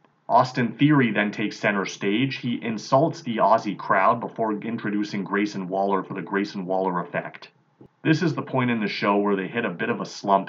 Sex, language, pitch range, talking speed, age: male, English, 95-120 Hz, 200 wpm, 30-49